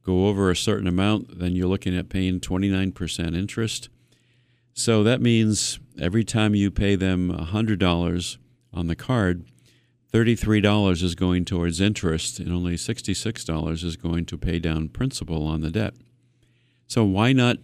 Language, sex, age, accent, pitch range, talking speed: English, male, 50-69, American, 90-120 Hz, 150 wpm